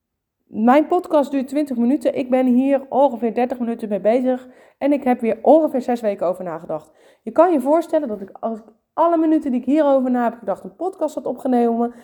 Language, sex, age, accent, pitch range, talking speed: Dutch, female, 20-39, Dutch, 220-275 Hz, 210 wpm